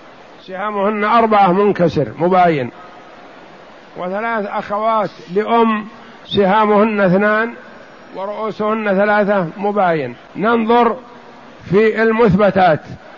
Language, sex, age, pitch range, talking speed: Arabic, male, 50-69, 185-220 Hz, 70 wpm